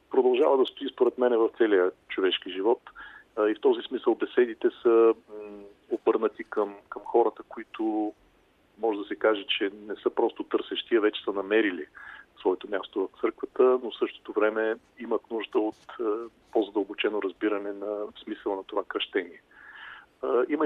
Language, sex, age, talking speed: Bulgarian, male, 40-59, 150 wpm